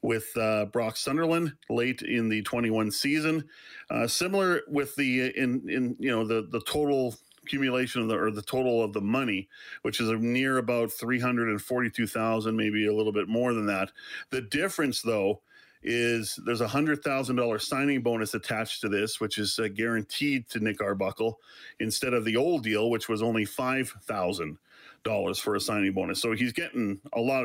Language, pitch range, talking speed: English, 110-130 Hz, 175 wpm